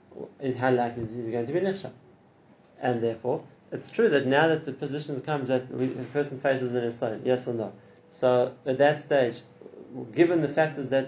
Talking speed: 195 wpm